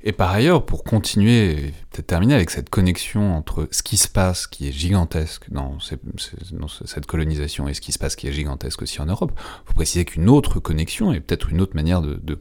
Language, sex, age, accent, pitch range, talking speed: French, male, 30-49, French, 80-105 Hz, 225 wpm